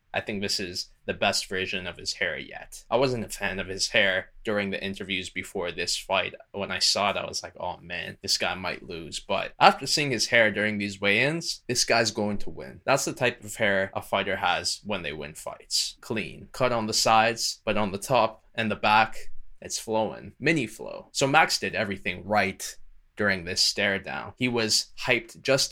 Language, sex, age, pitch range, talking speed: English, male, 10-29, 100-120 Hz, 210 wpm